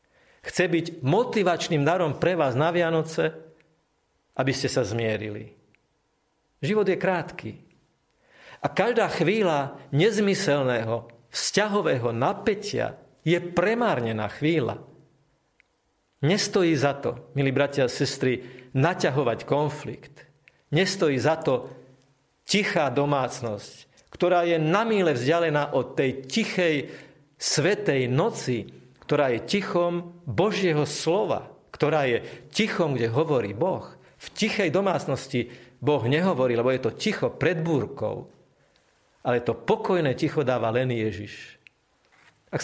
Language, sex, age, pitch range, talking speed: Slovak, male, 50-69, 130-175 Hz, 110 wpm